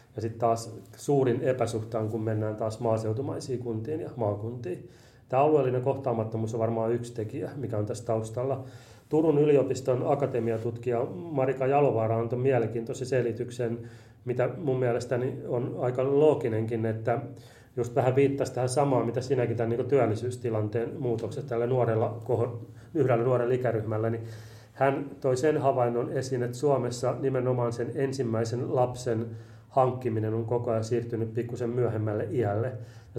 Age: 30-49